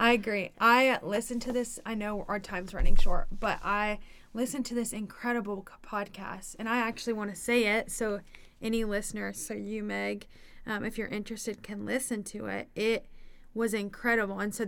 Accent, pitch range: American, 195-225 Hz